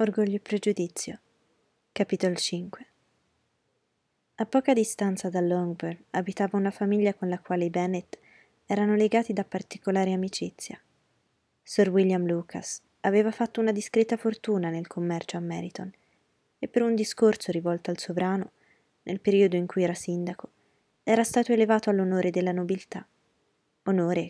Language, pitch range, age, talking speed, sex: Italian, 175-210 Hz, 20-39, 135 wpm, female